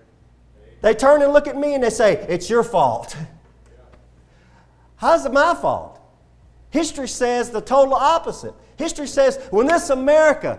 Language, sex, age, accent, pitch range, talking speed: English, male, 40-59, American, 210-295 Hz, 145 wpm